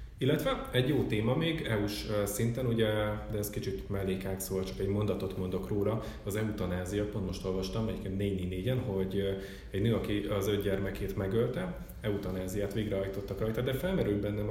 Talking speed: 160 wpm